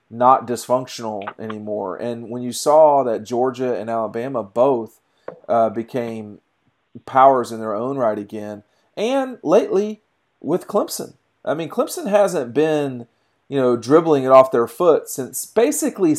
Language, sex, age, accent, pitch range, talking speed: English, male, 40-59, American, 120-155 Hz, 140 wpm